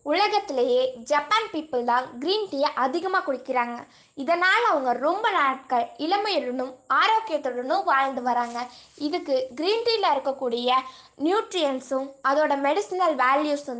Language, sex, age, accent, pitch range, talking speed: Tamil, female, 20-39, native, 260-335 Hz, 105 wpm